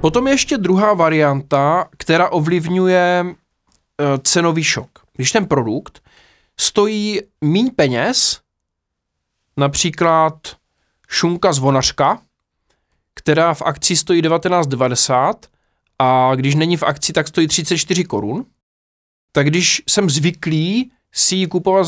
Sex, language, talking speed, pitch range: male, Czech, 105 wpm, 140-190 Hz